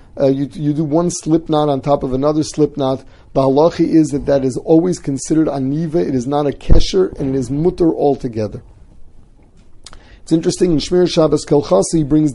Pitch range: 135-165 Hz